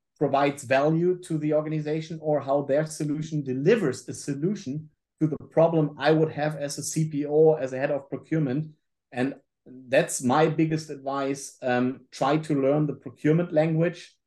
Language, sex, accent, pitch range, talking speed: English, male, German, 120-150 Hz, 160 wpm